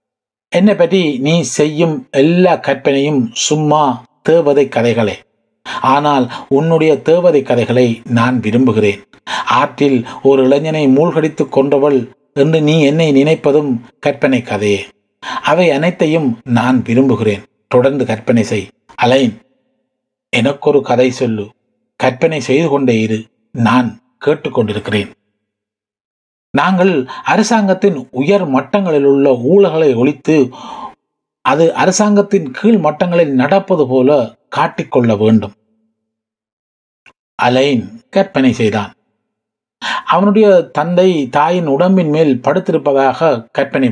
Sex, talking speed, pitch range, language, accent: male, 95 wpm, 120-165 Hz, Tamil, native